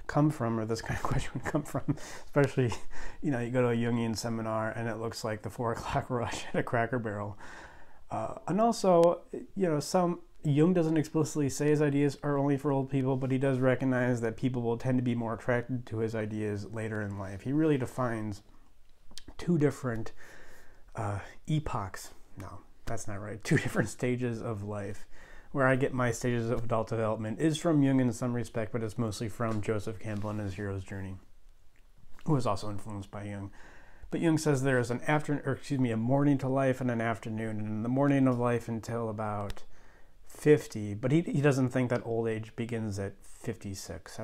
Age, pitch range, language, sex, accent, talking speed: 30-49, 110-135 Hz, English, male, American, 205 wpm